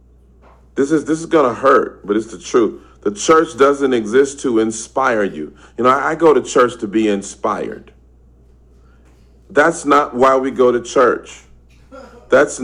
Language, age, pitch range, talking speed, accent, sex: English, 40-59, 105-140 Hz, 165 wpm, American, male